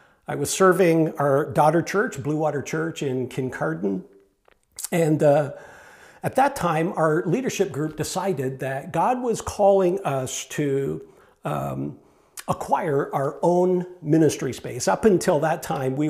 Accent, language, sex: American, English, male